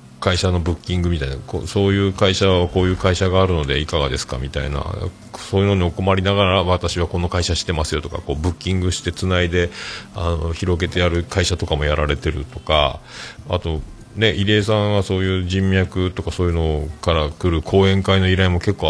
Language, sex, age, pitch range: Japanese, male, 40-59, 80-105 Hz